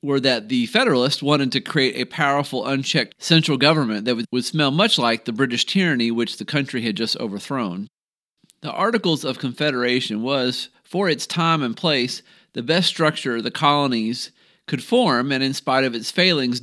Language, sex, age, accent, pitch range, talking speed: English, male, 40-59, American, 120-155 Hz, 180 wpm